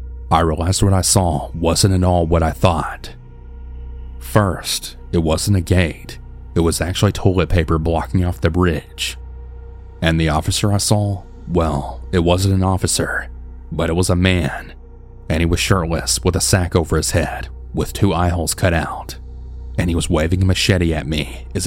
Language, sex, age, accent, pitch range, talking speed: English, male, 30-49, American, 75-95 Hz, 180 wpm